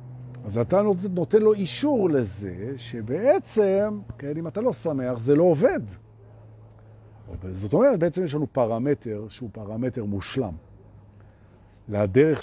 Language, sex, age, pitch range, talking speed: Hebrew, male, 50-69, 100-150 Hz, 120 wpm